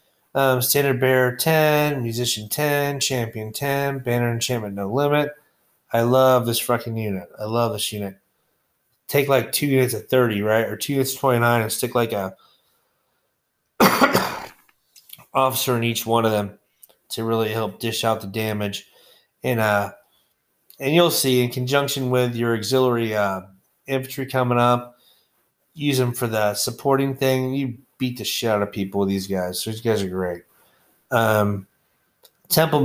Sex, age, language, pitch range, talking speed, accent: male, 30-49, English, 110-135 Hz, 160 wpm, American